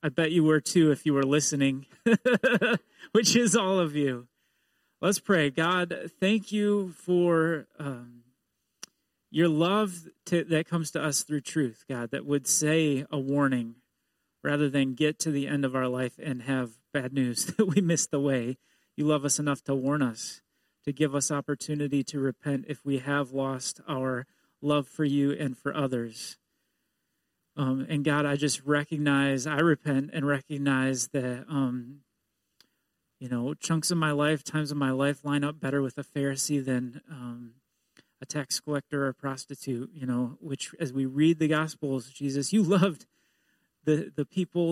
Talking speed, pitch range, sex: 170 wpm, 135-155 Hz, male